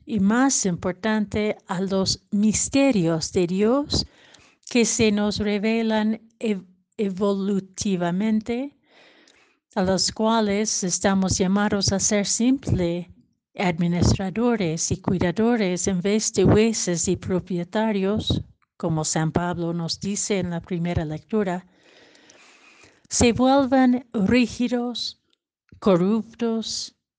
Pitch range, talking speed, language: 180-220 Hz, 95 wpm, Spanish